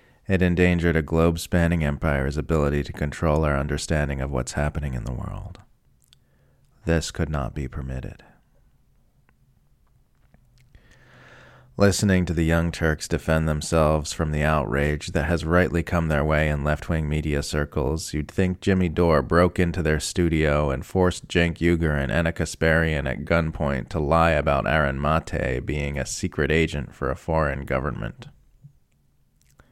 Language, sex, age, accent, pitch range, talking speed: English, male, 30-49, American, 75-90 Hz, 145 wpm